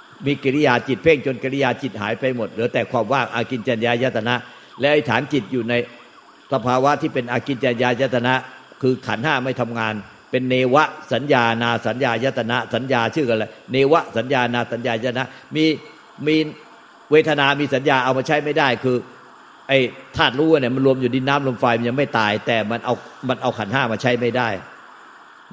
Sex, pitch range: male, 120-140 Hz